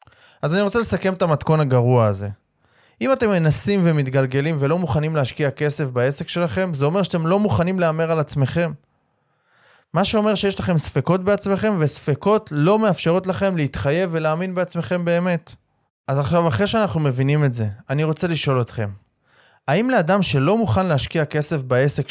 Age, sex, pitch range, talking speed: 20-39, male, 125-170 Hz, 155 wpm